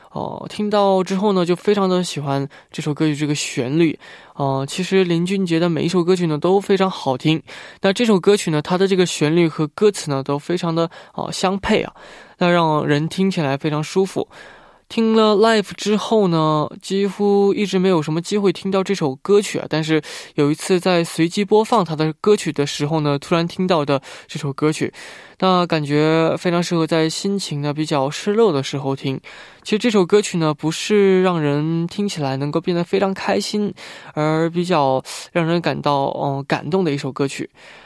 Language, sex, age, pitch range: Korean, male, 20-39, 145-190 Hz